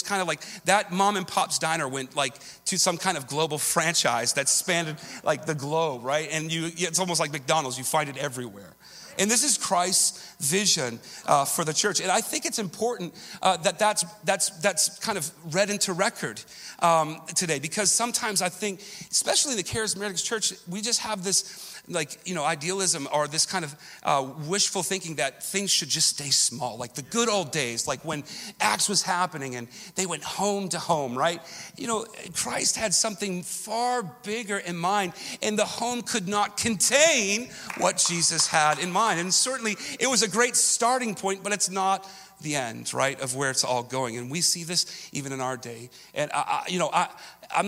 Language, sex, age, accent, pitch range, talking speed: English, male, 40-59, American, 145-195 Hz, 195 wpm